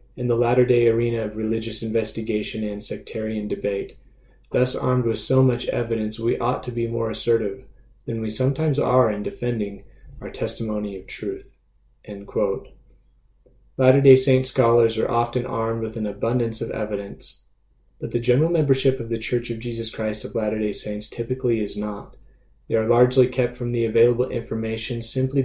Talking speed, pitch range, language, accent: 165 wpm, 110-125 Hz, English, American